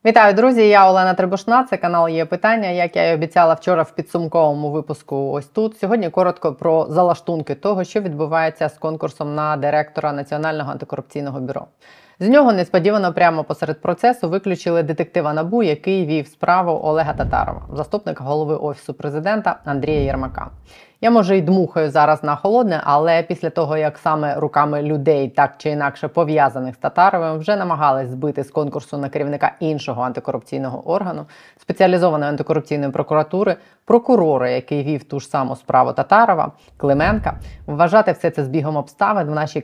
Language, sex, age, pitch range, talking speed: Ukrainian, female, 20-39, 145-180 Hz, 155 wpm